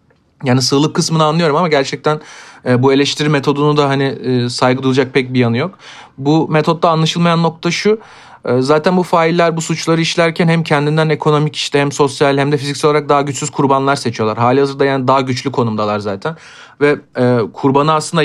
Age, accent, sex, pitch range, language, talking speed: 40-59, native, male, 130-160 Hz, Turkish, 170 wpm